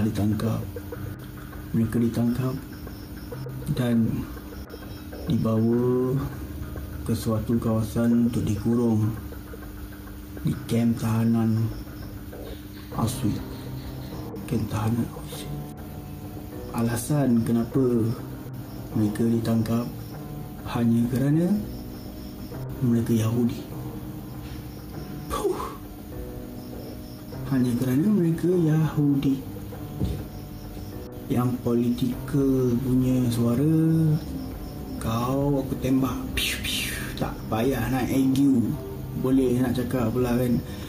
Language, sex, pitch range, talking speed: Malay, male, 105-130 Hz, 70 wpm